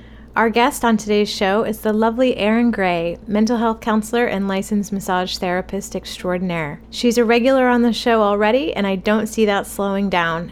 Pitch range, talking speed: 190-230 Hz, 185 wpm